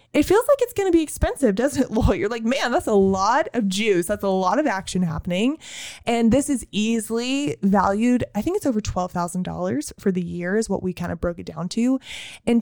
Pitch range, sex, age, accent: 190-240 Hz, female, 20-39, American